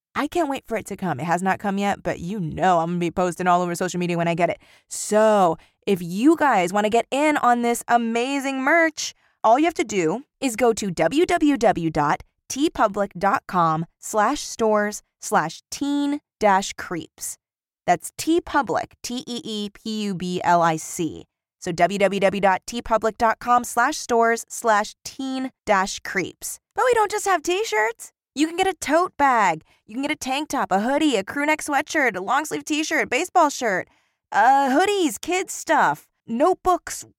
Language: English